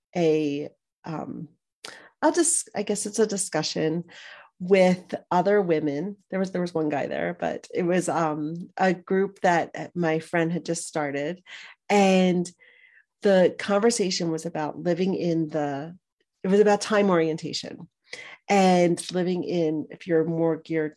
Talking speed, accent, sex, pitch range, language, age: 150 wpm, American, female, 160-190 Hz, English, 40-59